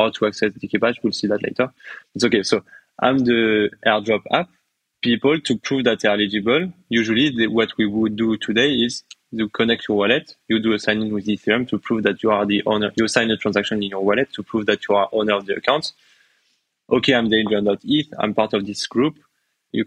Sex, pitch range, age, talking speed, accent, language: male, 105-125 Hz, 20-39, 215 wpm, French, English